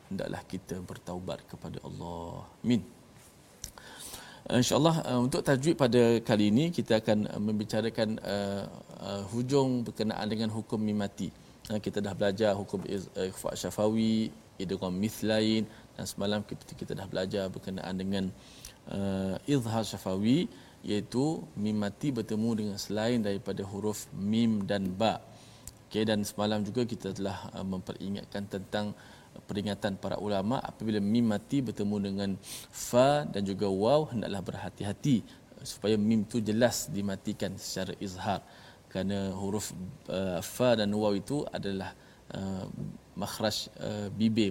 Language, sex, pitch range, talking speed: Malayalam, male, 100-120 Hz, 130 wpm